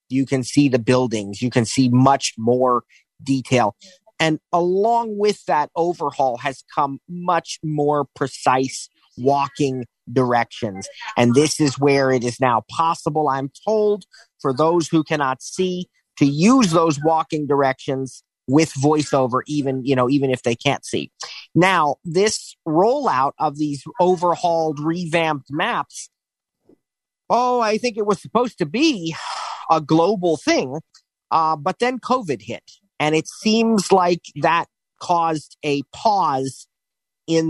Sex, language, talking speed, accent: male, English, 140 wpm, American